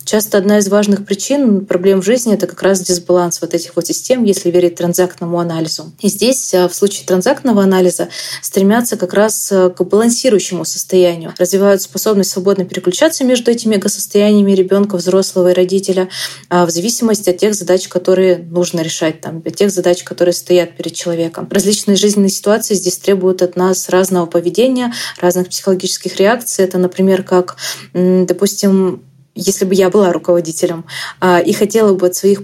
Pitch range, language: 175-200 Hz, Russian